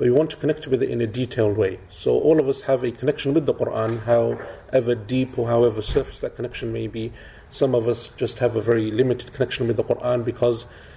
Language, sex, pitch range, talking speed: English, male, 115-135 Hz, 230 wpm